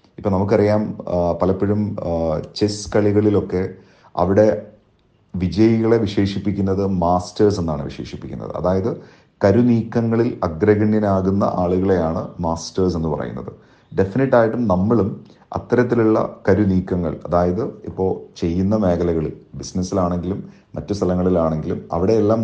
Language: Malayalam